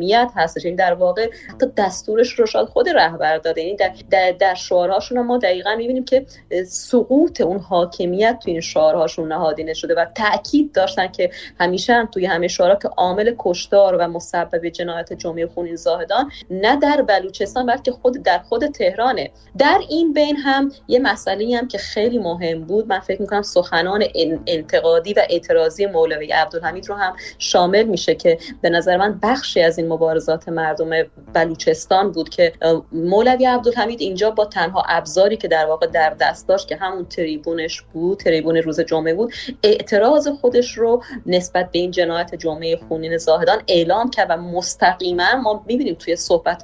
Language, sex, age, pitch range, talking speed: Persian, female, 30-49, 165-235 Hz, 165 wpm